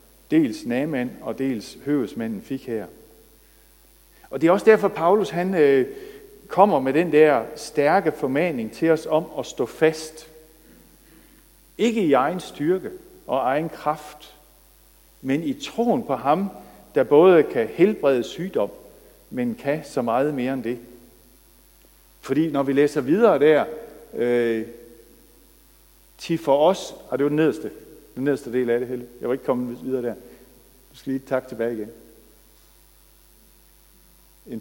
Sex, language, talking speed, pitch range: male, Danish, 150 wpm, 135-225 Hz